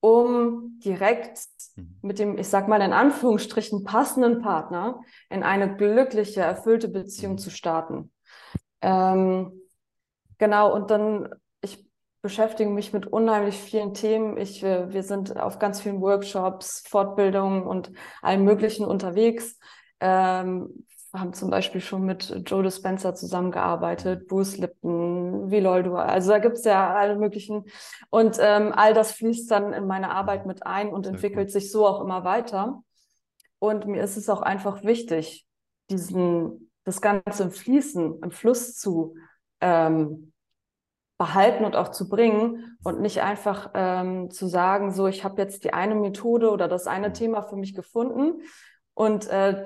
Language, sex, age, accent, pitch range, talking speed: German, female, 20-39, German, 185-215 Hz, 150 wpm